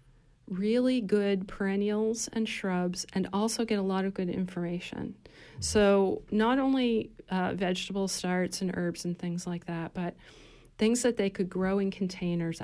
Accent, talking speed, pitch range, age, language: American, 155 wpm, 170-195 Hz, 40-59, English